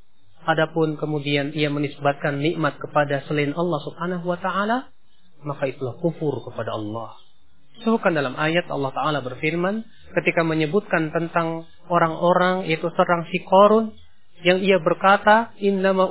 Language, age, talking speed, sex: English, 30-49, 130 wpm, male